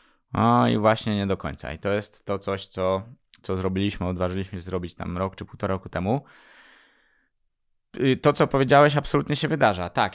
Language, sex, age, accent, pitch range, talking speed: Polish, male, 20-39, native, 90-110 Hz, 185 wpm